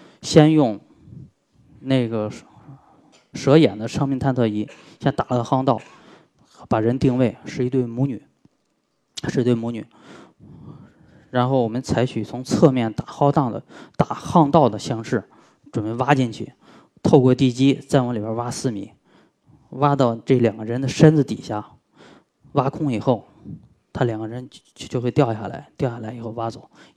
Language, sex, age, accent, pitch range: Chinese, male, 10-29, native, 115-135 Hz